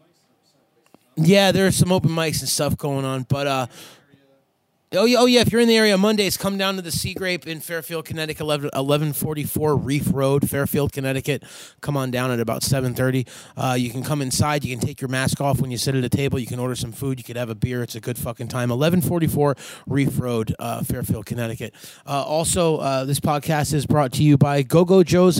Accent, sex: American, male